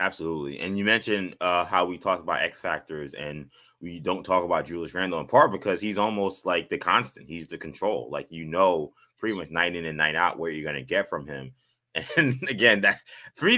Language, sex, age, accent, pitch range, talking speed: English, male, 20-39, American, 90-110 Hz, 225 wpm